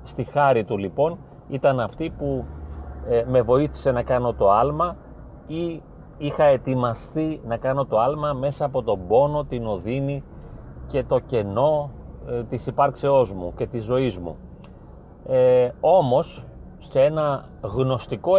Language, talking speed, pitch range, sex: Greek, 130 wpm, 120-145 Hz, male